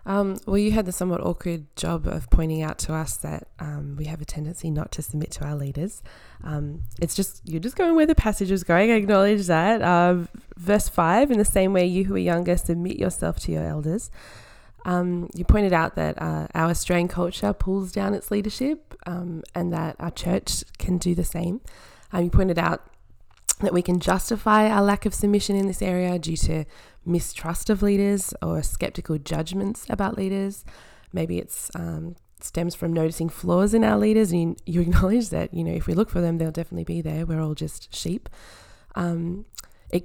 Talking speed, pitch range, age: 200 wpm, 155-195 Hz, 20-39